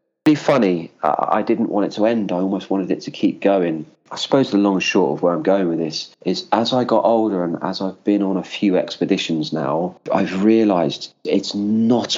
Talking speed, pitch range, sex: 215 wpm, 90-120 Hz, male